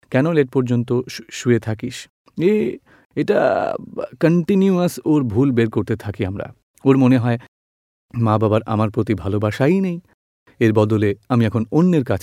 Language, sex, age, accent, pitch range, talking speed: Gujarati, male, 40-59, native, 110-145 Hz, 100 wpm